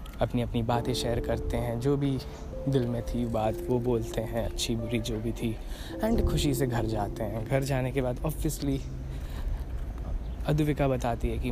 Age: 20-39